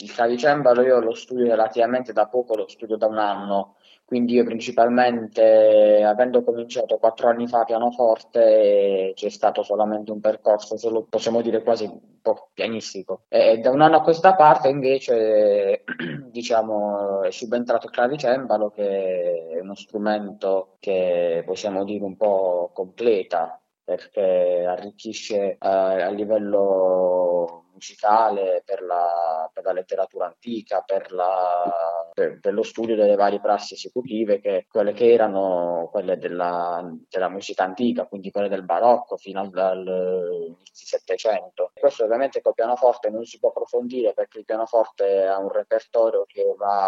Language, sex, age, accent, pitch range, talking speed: Italian, male, 20-39, native, 95-135 Hz, 140 wpm